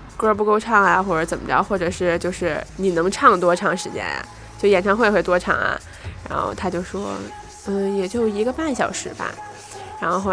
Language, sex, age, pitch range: Chinese, female, 20-39, 195-245 Hz